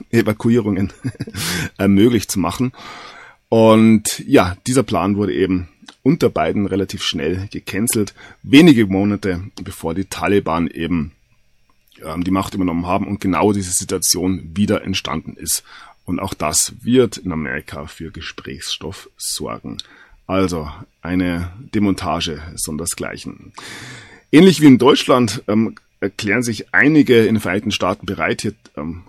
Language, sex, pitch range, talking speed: German, male, 90-115 Hz, 125 wpm